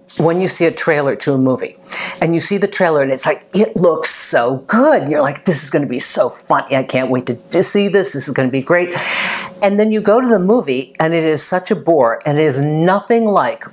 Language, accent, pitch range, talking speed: English, American, 145-200 Hz, 260 wpm